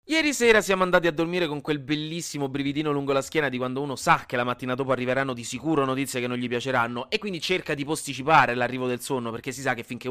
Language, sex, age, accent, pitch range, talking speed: Italian, male, 30-49, native, 125-165 Hz, 250 wpm